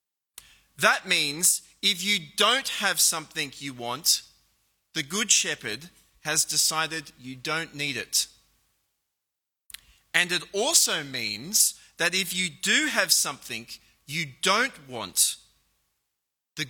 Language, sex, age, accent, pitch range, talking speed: English, male, 30-49, Australian, 135-200 Hz, 115 wpm